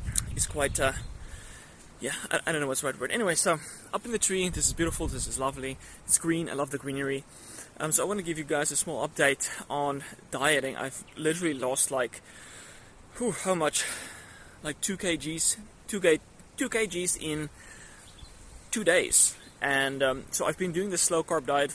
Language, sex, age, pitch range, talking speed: English, male, 20-39, 140-165 Hz, 185 wpm